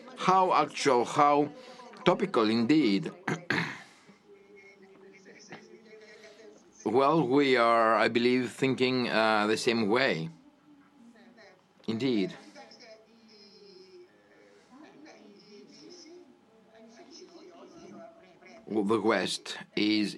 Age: 50-69